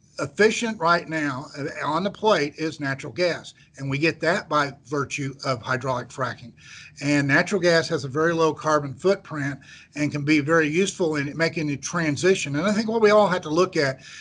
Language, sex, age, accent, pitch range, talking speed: English, male, 50-69, American, 145-170 Hz, 195 wpm